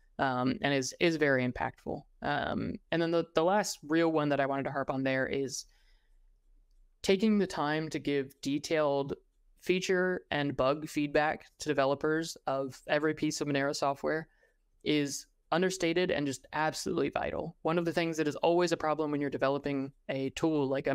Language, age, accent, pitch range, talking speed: English, 20-39, American, 140-160 Hz, 180 wpm